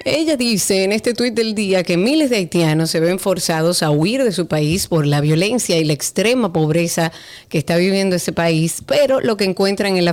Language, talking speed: Spanish, 220 wpm